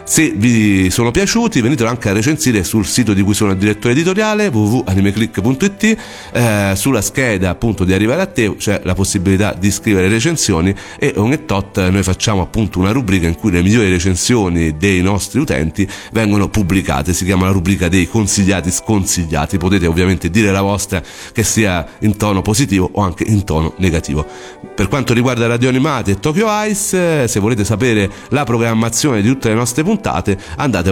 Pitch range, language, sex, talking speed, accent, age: 95-120 Hz, Italian, male, 180 wpm, native, 40-59